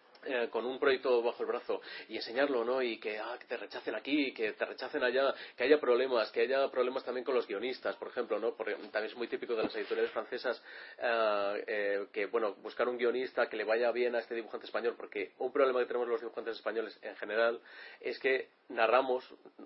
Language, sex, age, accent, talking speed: Spanish, male, 30-49, Spanish, 215 wpm